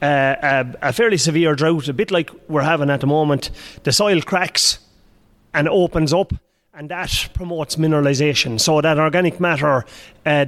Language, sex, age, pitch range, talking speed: English, male, 30-49, 150-185 Hz, 165 wpm